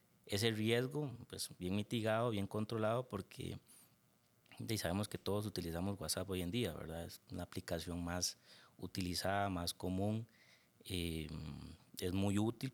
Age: 30-49